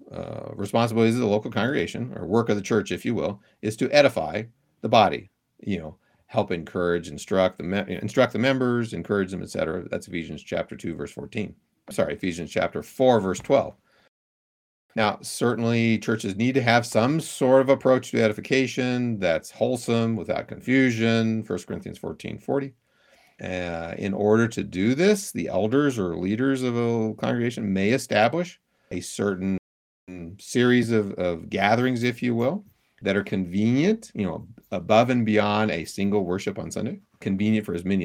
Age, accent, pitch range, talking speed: 50-69, American, 100-130 Hz, 165 wpm